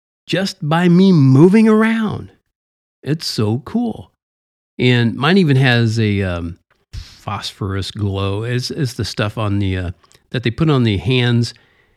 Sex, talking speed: male, 145 wpm